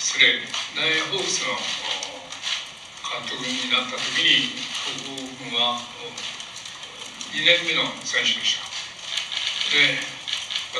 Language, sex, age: Japanese, male, 60-79